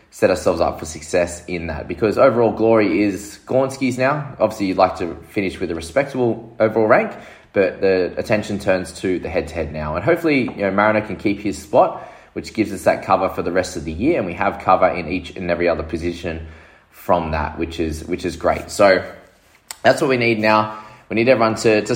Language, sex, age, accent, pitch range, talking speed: English, male, 20-39, Australian, 85-115 Hz, 215 wpm